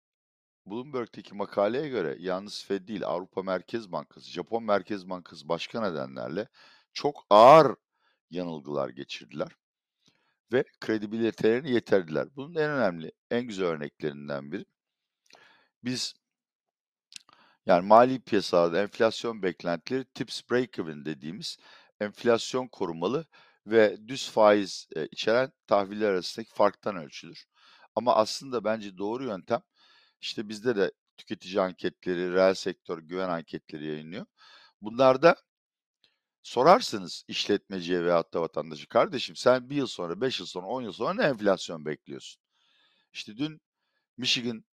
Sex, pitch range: male, 90-125 Hz